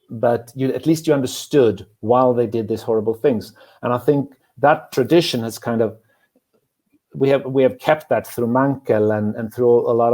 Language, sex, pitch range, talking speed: Turkish, male, 110-130 Hz, 195 wpm